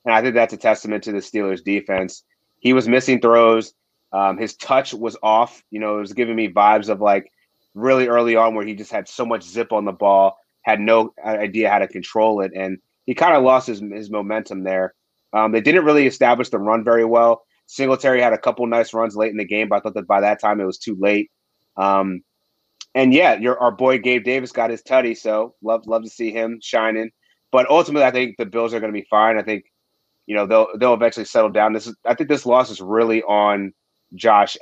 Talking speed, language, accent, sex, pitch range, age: 230 wpm, English, American, male, 100-115 Hz, 30-49